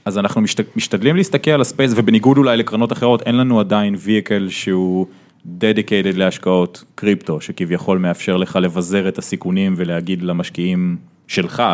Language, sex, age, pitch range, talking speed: Hebrew, male, 20-39, 90-120 Hz, 145 wpm